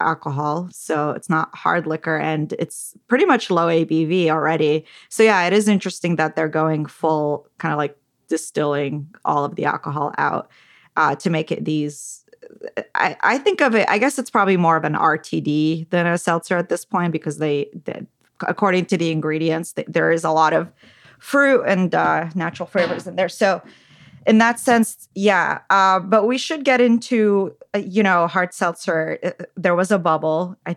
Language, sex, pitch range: English, female, 160-205 Hz